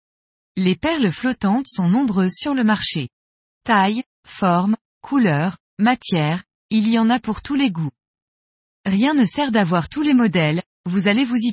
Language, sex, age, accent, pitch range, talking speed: French, female, 20-39, French, 180-245 Hz, 160 wpm